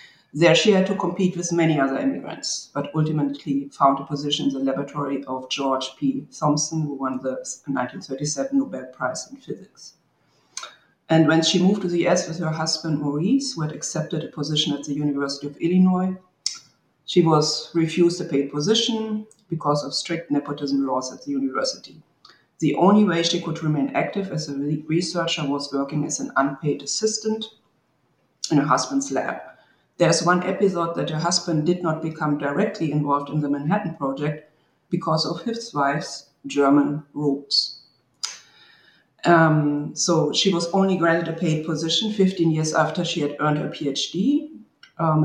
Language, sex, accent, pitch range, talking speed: English, female, German, 145-170 Hz, 165 wpm